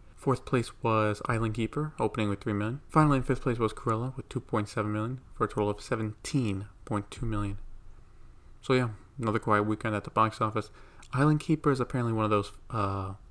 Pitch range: 100-115 Hz